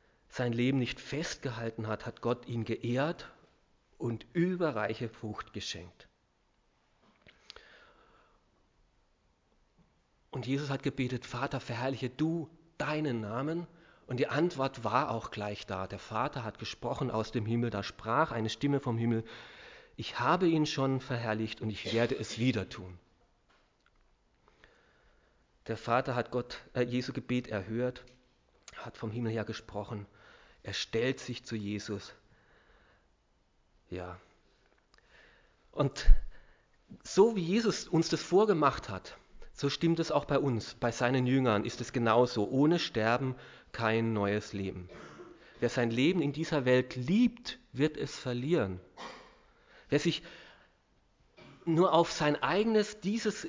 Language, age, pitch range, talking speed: German, 40-59, 115-150 Hz, 125 wpm